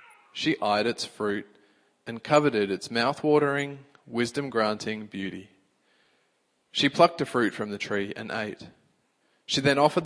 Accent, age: Australian, 20-39